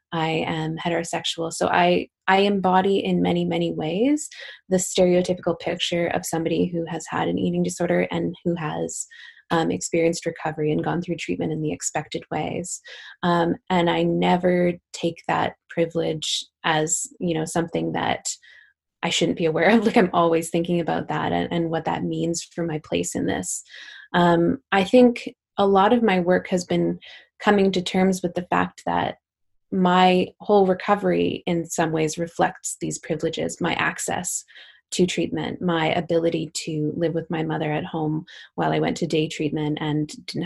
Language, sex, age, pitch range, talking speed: English, female, 20-39, 160-180 Hz, 170 wpm